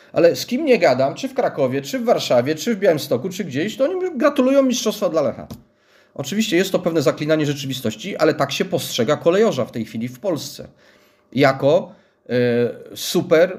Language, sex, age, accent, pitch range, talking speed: Polish, male, 40-59, native, 120-170 Hz, 175 wpm